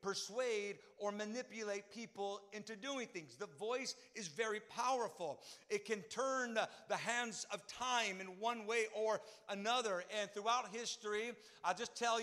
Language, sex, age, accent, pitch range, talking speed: English, male, 50-69, American, 205-250 Hz, 145 wpm